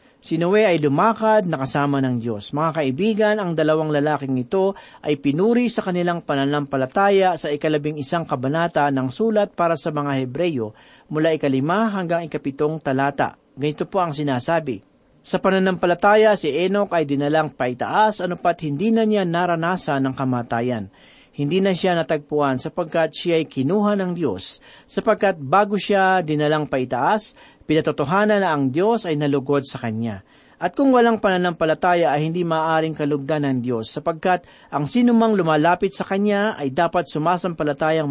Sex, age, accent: male, 40-59, native